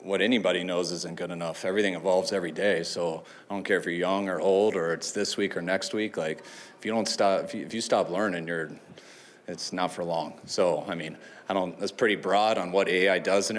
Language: English